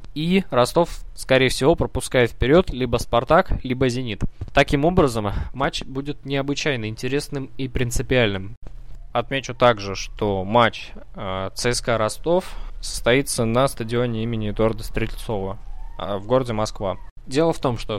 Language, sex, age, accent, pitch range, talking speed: Russian, male, 20-39, native, 110-135 Hz, 125 wpm